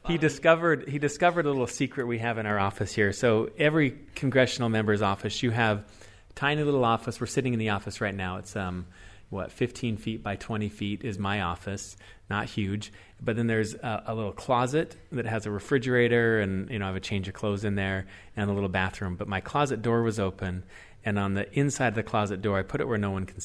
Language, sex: English, male